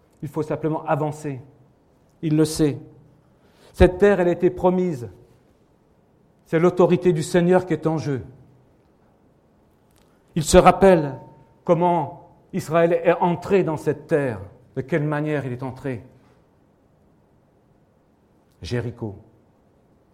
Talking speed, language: 115 wpm, French